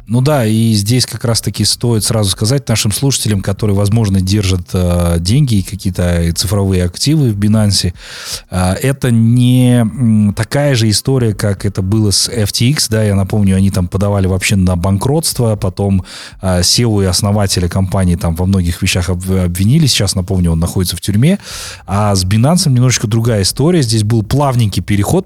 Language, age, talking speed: Russian, 30-49, 155 wpm